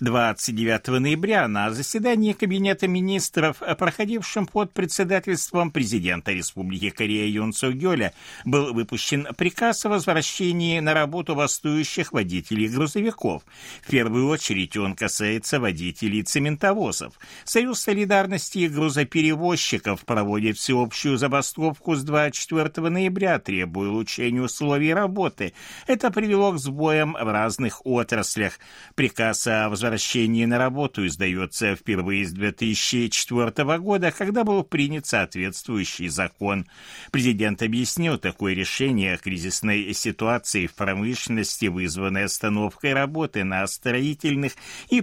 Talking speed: 110 wpm